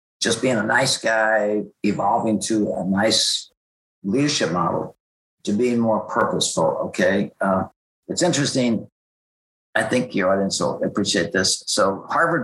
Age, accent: 50-69, American